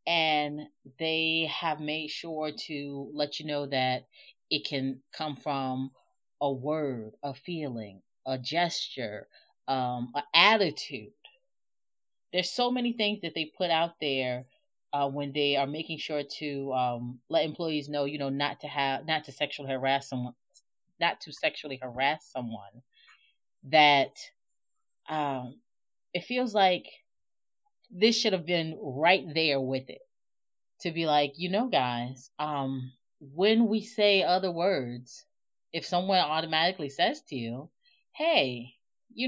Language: English